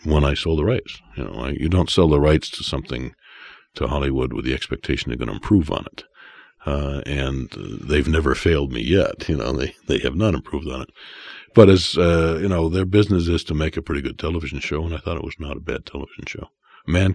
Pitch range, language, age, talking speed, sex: 65-85 Hz, English, 60-79, 240 wpm, male